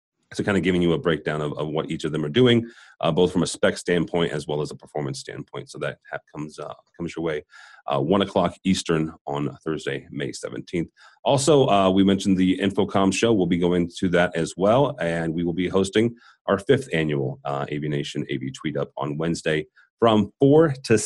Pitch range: 80-110 Hz